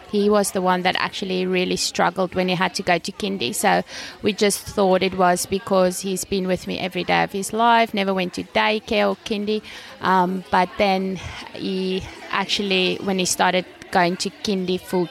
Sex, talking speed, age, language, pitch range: female, 195 wpm, 20-39, English, 180-195 Hz